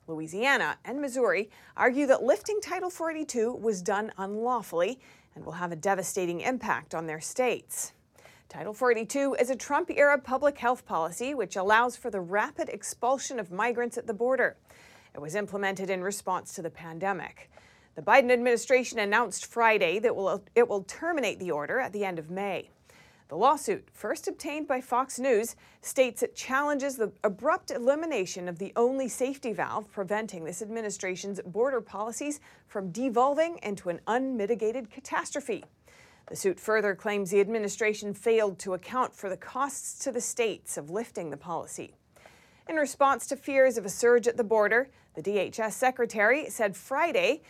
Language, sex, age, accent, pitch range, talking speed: English, female, 40-59, American, 200-270 Hz, 160 wpm